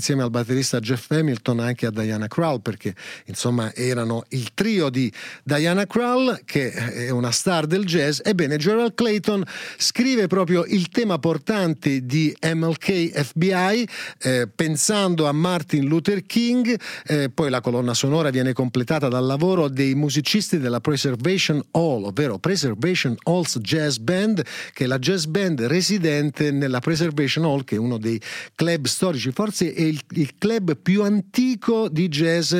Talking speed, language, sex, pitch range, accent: 150 wpm, Italian, male, 135-185 Hz, native